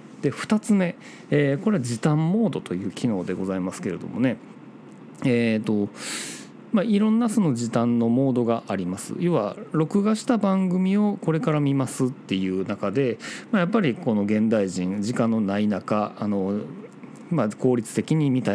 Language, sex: Japanese, male